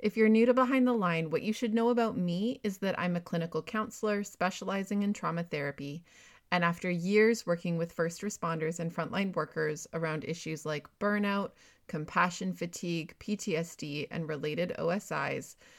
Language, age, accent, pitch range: English, 30-49, American, 165-210 Hz